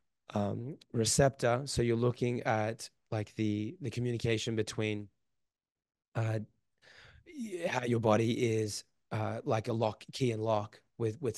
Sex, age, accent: male, 20-39, American